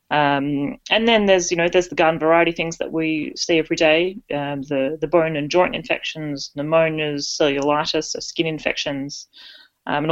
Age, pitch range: 30-49, 150-195 Hz